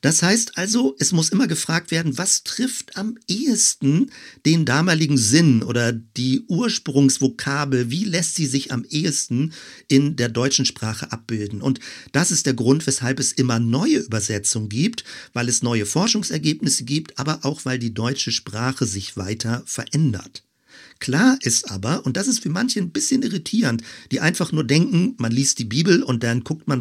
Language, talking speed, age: German, 170 wpm, 50-69